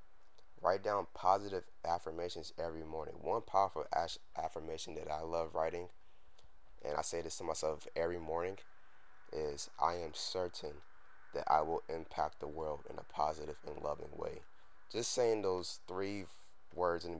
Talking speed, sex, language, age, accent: 155 wpm, male, English, 20-39, American